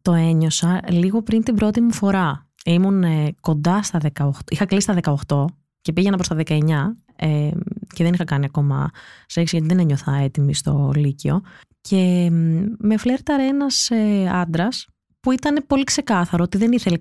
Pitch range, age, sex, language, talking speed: 155-230 Hz, 20-39, female, Greek, 170 wpm